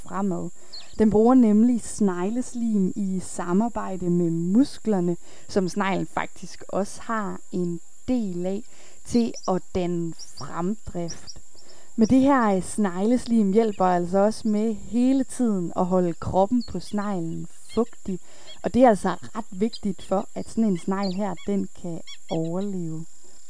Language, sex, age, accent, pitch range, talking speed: Danish, female, 20-39, native, 180-220 Hz, 130 wpm